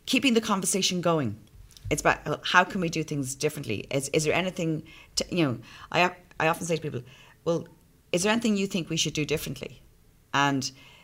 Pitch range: 130-170 Hz